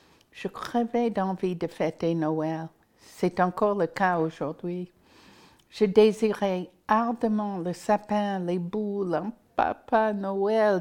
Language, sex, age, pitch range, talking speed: French, female, 60-79, 180-220 Hz, 115 wpm